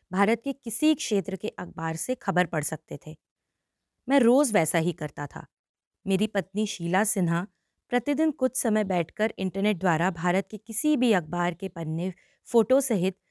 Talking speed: 165 wpm